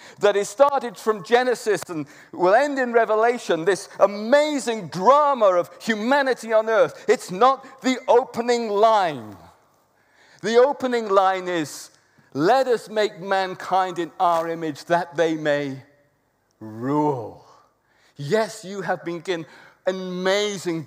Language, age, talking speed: English, 50-69, 125 wpm